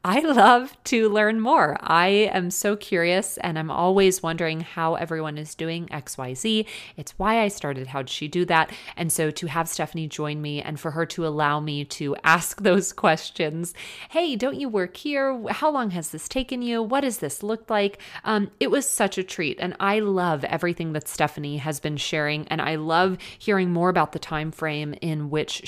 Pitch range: 150-200 Hz